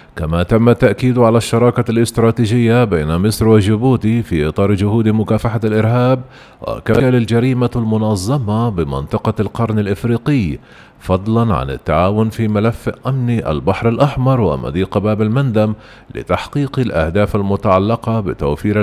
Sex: male